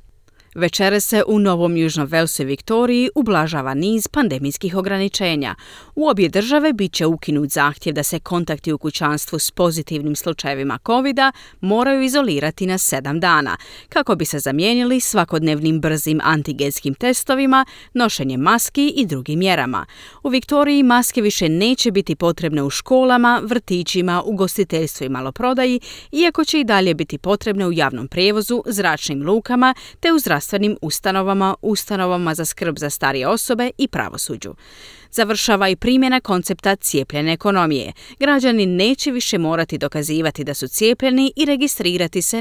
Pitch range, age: 155-240 Hz, 30-49